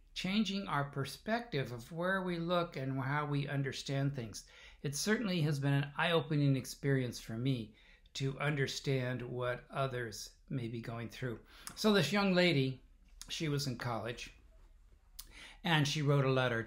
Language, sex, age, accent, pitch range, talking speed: English, male, 60-79, American, 115-155 Hz, 150 wpm